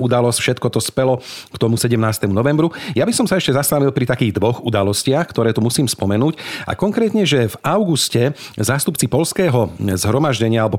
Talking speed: 170 wpm